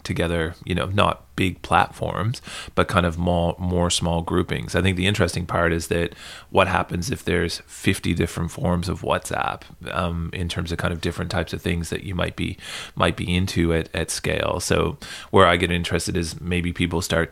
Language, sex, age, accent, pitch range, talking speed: English, male, 30-49, American, 85-90 Hz, 200 wpm